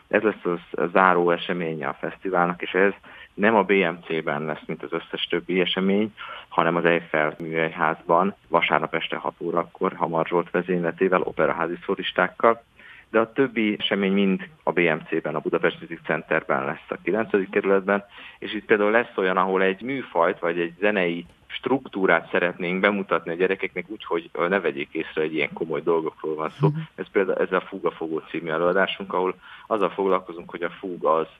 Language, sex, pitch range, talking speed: Hungarian, male, 85-105 Hz, 160 wpm